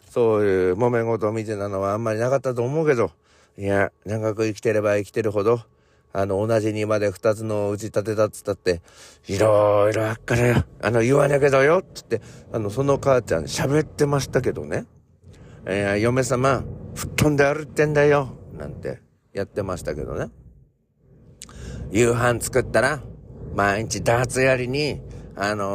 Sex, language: male, Japanese